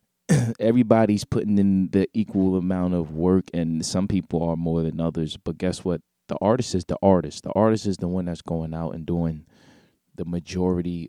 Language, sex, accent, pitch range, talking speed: English, male, American, 85-105 Hz, 190 wpm